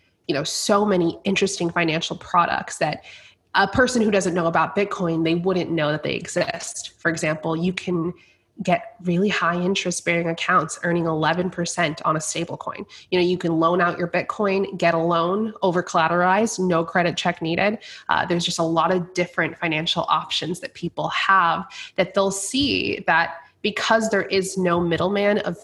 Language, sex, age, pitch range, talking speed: English, female, 20-39, 165-190 Hz, 180 wpm